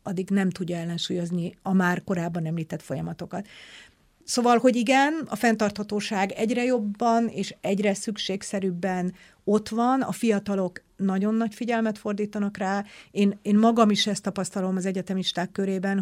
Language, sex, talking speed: Hungarian, female, 140 wpm